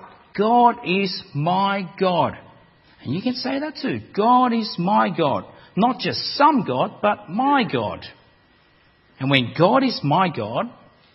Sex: male